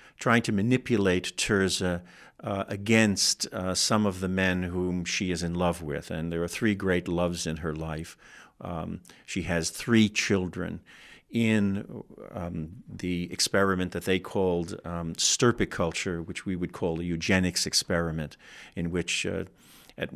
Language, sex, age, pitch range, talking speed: English, male, 50-69, 85-100 Hz, 150 wpm